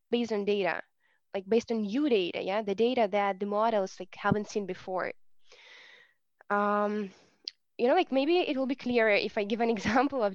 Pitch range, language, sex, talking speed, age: 195-240 Hz, English, female, 190 wpm, 10-29